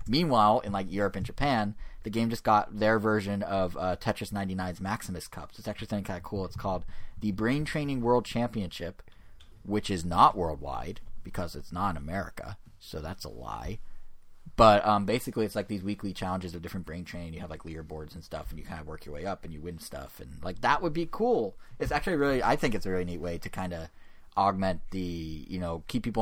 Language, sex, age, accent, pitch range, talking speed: English, male, 30-49, American, 85-110 Hz, 225 wpm